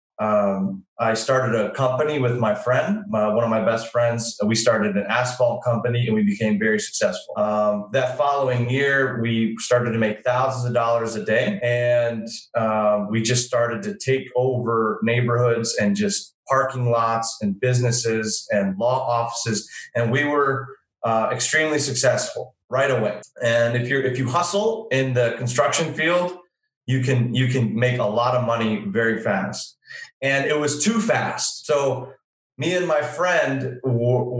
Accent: American